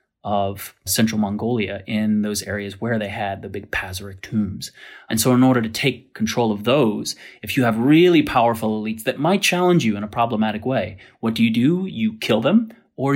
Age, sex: 30-49, male